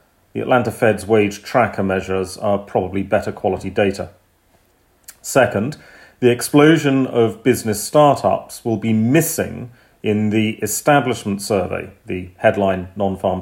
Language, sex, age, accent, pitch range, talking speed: English, male, 40-59, British, 100-120 Hz, 120 wpm